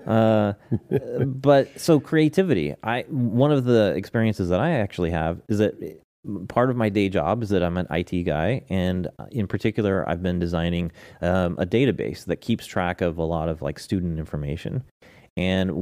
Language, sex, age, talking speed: English, male, 30-49, 175 wpm